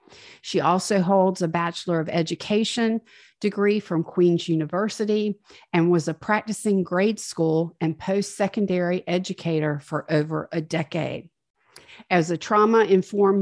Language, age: English, 50-69